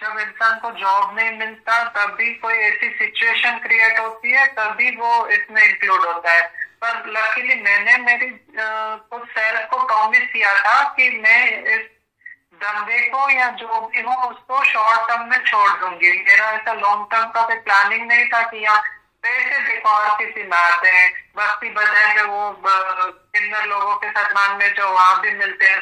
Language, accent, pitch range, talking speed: Hindi, native, 205-250 Hz, 160 wpm